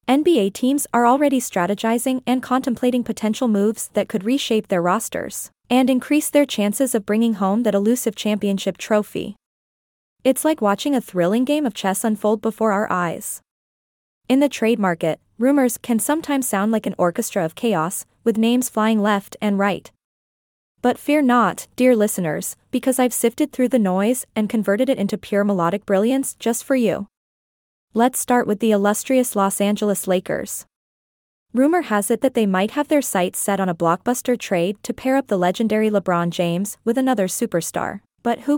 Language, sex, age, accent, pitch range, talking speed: English, female, 20-39, American, 200-250 Hz, 175 wpm